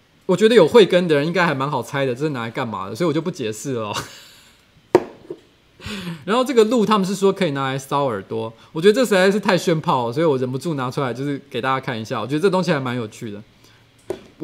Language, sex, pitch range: Chinese, male, 130-185 Hz